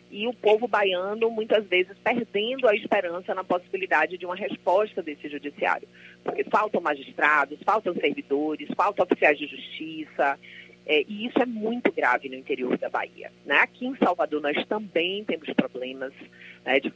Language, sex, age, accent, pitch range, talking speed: Portuguese, female, 30-49, Brazilian, 150-220 Hz, 160 wpm